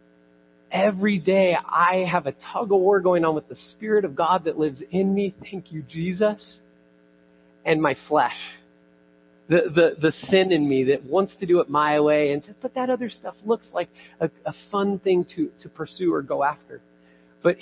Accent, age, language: American, 40-59, English